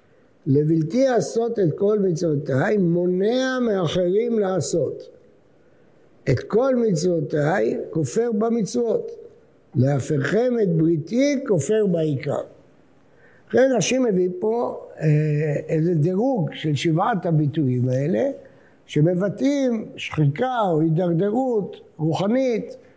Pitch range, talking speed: 160-225 Hz, 80 wpm